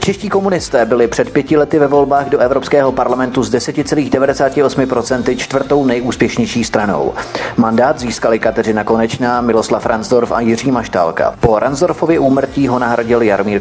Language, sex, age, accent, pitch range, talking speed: Czech, male, 30-49, native, 120-150 Hz, 135 wpm